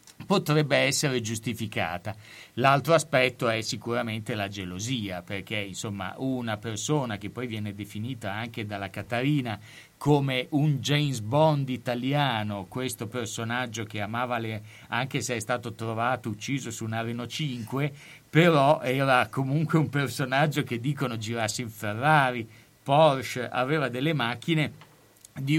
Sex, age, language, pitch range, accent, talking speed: male, 50-69, Italian, 105-140 Hz, native, 130 wpm